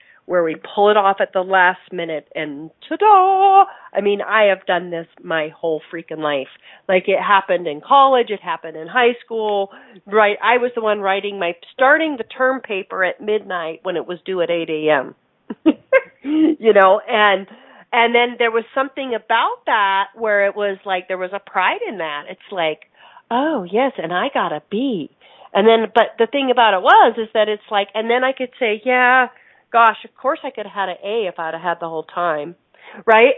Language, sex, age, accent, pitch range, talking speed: English, female, 40-59, American, 190-260 Hz, 205 wpm